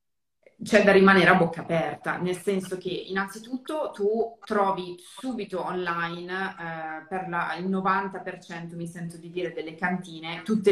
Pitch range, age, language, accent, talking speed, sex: 170-195 Hz, 20-39, Italian, native, 140 wpm, female